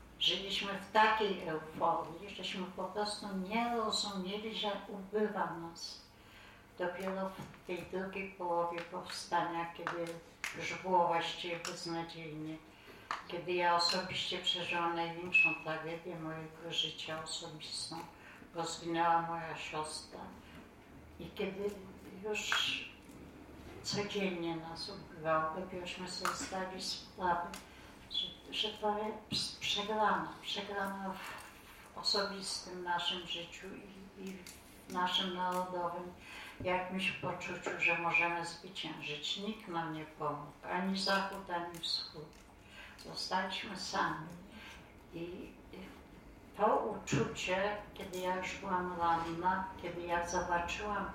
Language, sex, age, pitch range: Polish, female, 60-79, 165-190 Hz